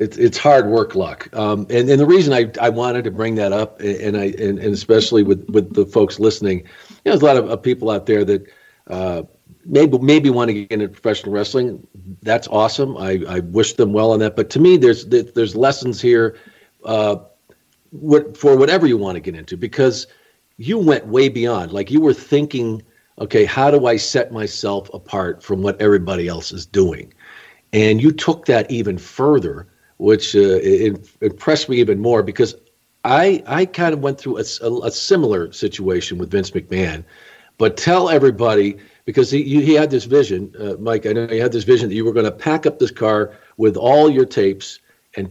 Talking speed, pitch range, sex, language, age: 200 wpm, 105-140 Hz, male, English, 50-69